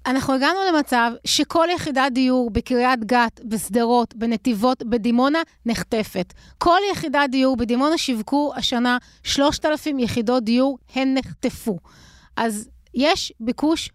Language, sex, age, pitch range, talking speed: Hebrew, female, 30-49, 230-270 Hz, 110 wpm